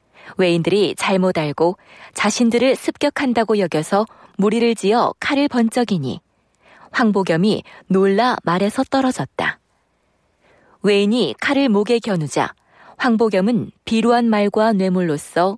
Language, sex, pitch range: Korean, female, 190-240 Hz